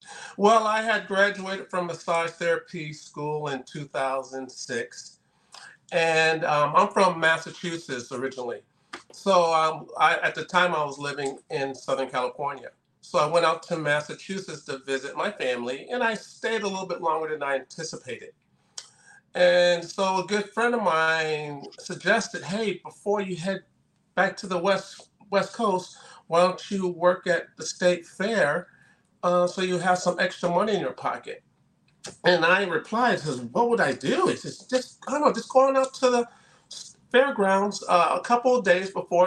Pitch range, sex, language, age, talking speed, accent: 150-200 Hz, male, English, 40-59, 165 wpm, American